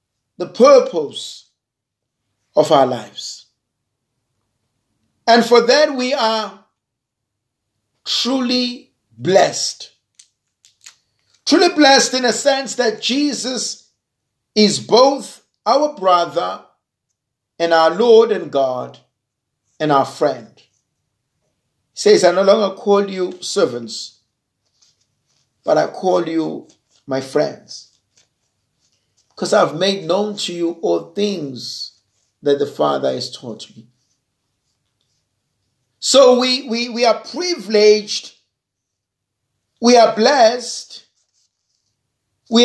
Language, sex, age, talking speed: English, male, 50-69, 95 wpm